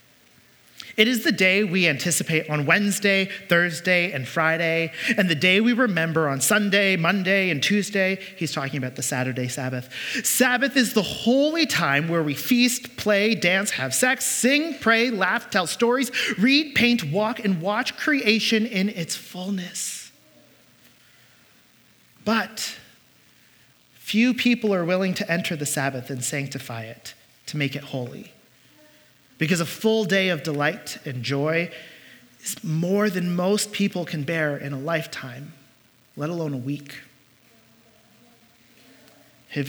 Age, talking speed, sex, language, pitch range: 30-49, 140 wpm, male, English, 135-200 Hz